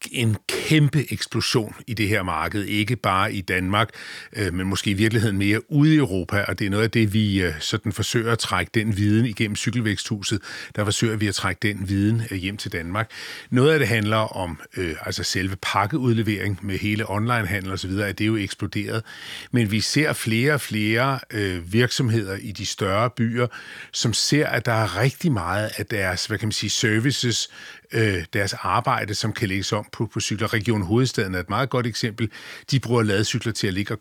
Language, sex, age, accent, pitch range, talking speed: Danish, male, 40-59, native, 100-120 Hz, 190 wpm